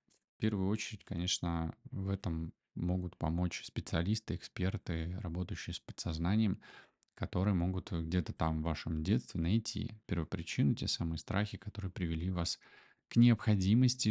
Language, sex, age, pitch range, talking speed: Russian, male, 20-39, 85-110 Hz, 130 wpm